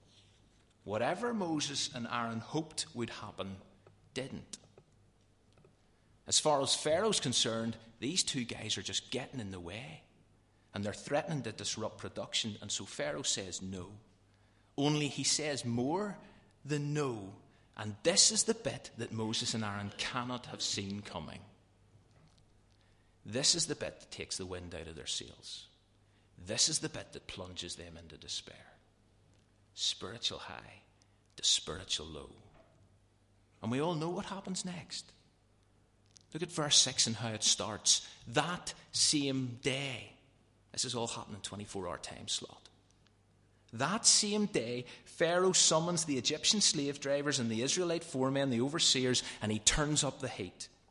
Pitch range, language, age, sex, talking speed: 105-140 Hz, English, 30-49, male, 145 wpm